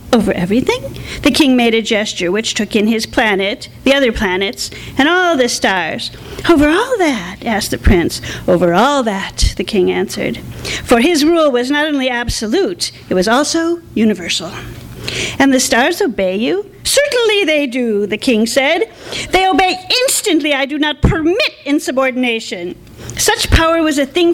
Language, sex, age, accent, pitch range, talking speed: English, female, 40-59, American, 230-315 Hz, 165 wpm